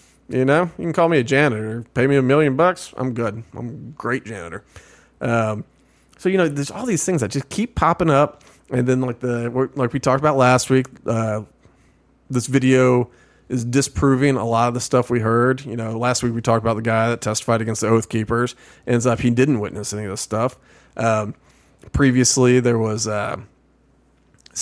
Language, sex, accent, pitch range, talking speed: English, male, American, 110-130 Hz, 205 wpm